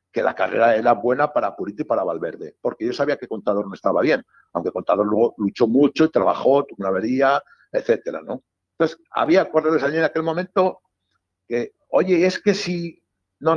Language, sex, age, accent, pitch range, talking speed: Spanish, male, 60-79, Spanish, 105-165 Hz, 190 wpm